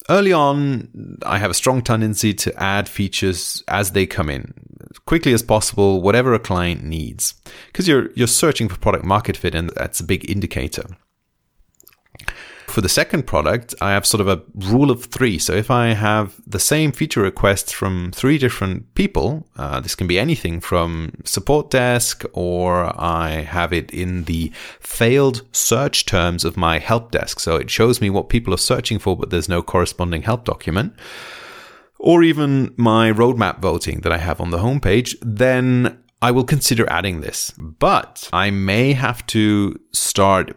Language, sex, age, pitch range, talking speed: English, male, 30-49, 90-120 Hz, 175 wpm